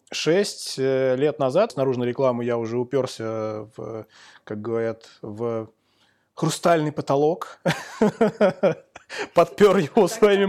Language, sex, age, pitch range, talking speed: Russian, male, 20-39, 120-150 Hz, 105 wpm